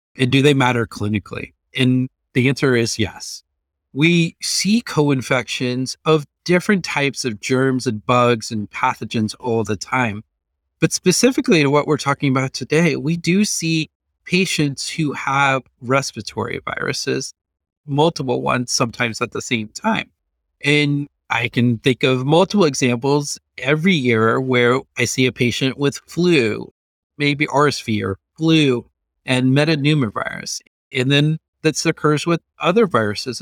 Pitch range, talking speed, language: 120-155 Hz, 140 wpm, English